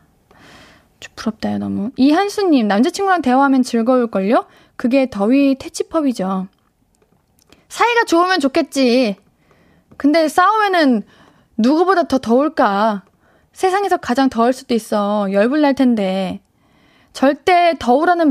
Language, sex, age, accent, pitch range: Korean, female, 20-39, native, 220-315 Hz